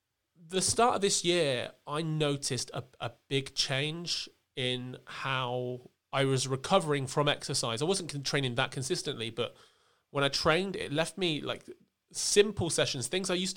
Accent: British